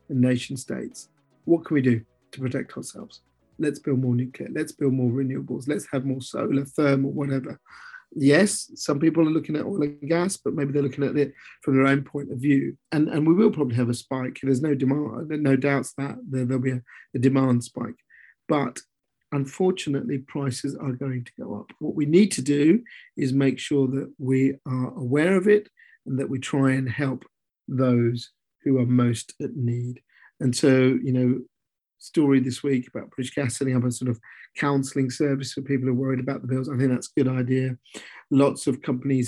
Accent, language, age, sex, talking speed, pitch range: British, English, 50-69, male, 200 wpm, 130-145 Hz